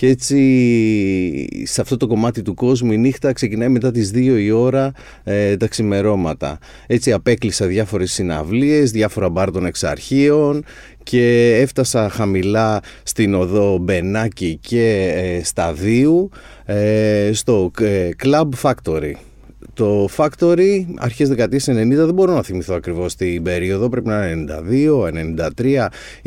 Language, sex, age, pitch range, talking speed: Greek, male, 30-49, 90-125 Hz, 130 wpm